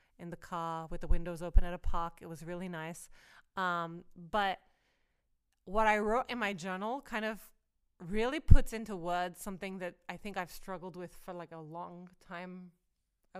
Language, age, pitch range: English, 20-39, 185-230 Hz